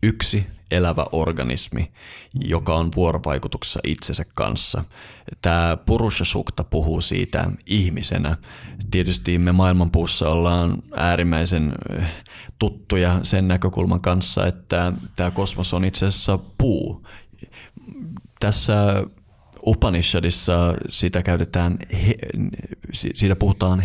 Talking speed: 85 wpm